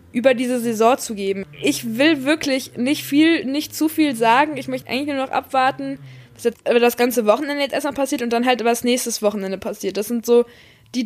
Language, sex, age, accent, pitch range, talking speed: German, female, 20-39, German, 230-280 Hz, 220 wpm